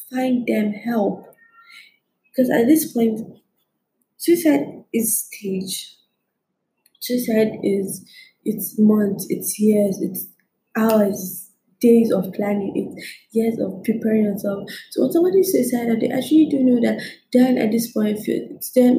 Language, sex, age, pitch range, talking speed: English, female, 20-39, 205-240 Hz, 130 wpm